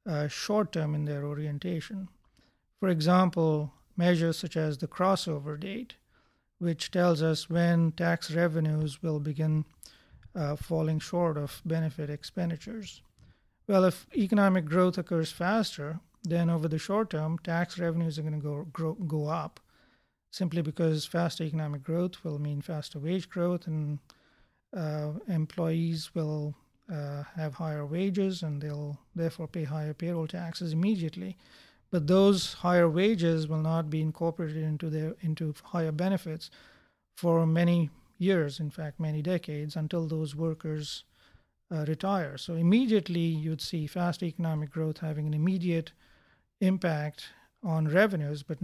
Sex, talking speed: male, 135 wpm